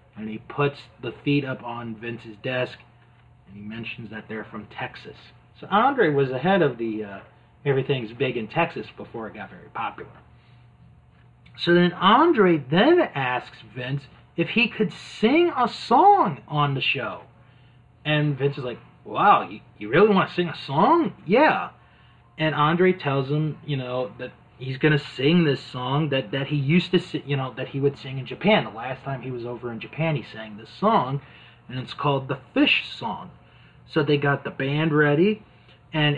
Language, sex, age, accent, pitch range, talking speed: English, male, 30-49, American, 120-160 Hz, 185 wpm